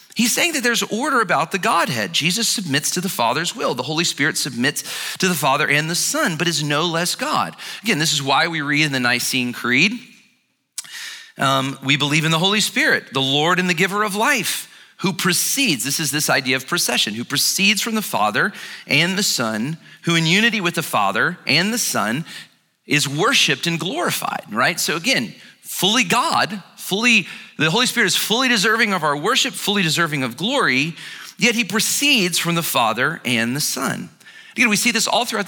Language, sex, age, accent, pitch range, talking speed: English, male, 40-59, American, 155-230 Hz, 195 wpm